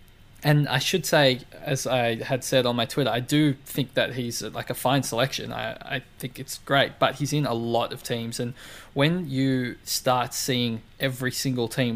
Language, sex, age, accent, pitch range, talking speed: English, male, 20-39, Australian, 115-130 Hz, 200 wpm